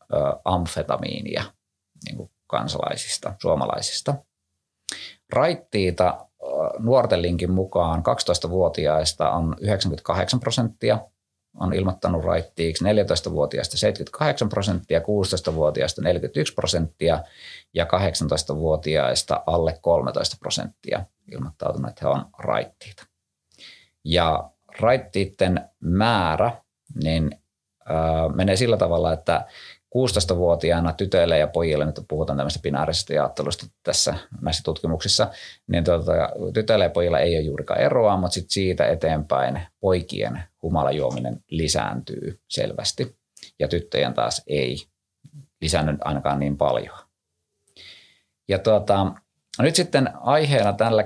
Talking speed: 95 wpm